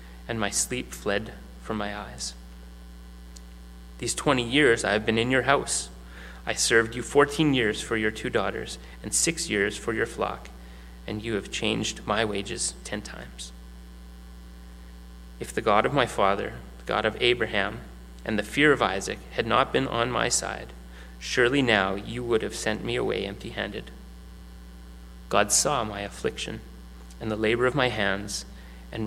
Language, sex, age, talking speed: English, male, 30-49, 165 wpm